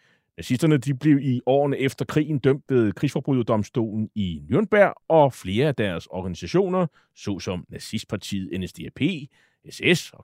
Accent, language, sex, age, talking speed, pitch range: native, Danish, male, 30-49, 130 wpm, 125-180 Hz